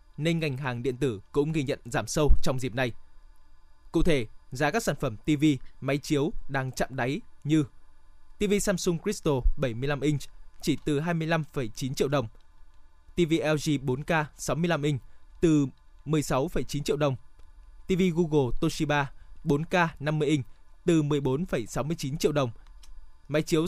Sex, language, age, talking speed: male, Vietnamese, 20-39, 145 wpm